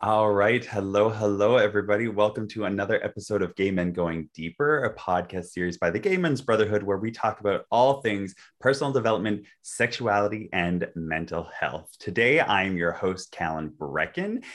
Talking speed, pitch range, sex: 165 wpm, 90-120 Hz, male